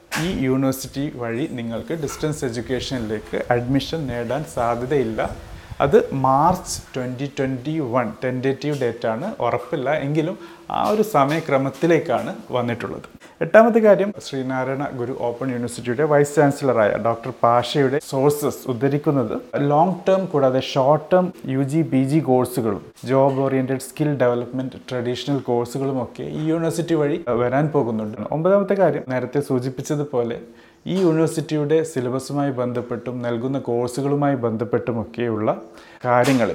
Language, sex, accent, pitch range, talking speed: Malayalam, male, native, 120-145 Hz, 115 wpm